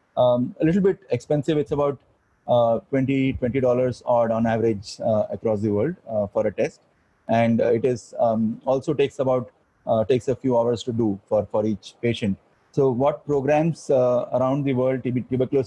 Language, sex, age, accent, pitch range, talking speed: English, male, 30-49, Indian, 120-145 Hz, 185 wpm